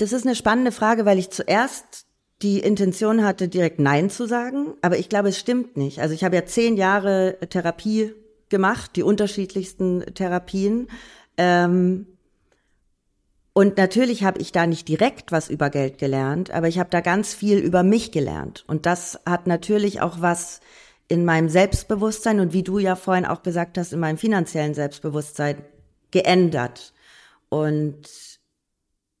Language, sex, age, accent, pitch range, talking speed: English, female, 40-59, German, 150-200 Hz, 155 wpm